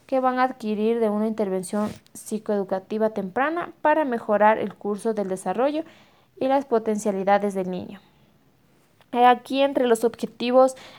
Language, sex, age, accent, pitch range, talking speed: Spanish, female, 20-39, Mexican, 205-245 Hz, 130 wpm